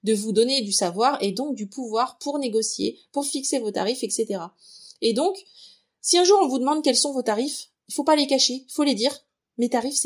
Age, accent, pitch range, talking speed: 30-49, French, 205-290 Hz, 225 wpm